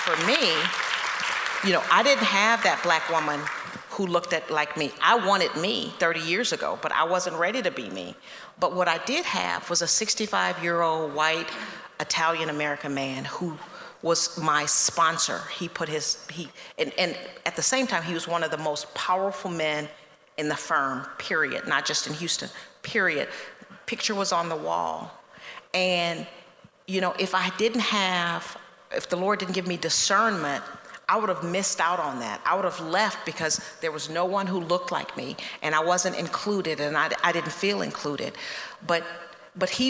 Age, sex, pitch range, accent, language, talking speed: 40-59, female, 165-195 Hz, American, English, 185 wpm